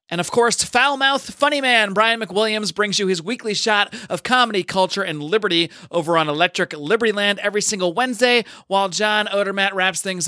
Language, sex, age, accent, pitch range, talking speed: English, male, 30-49, American, 160-215 Hz, 180 wpm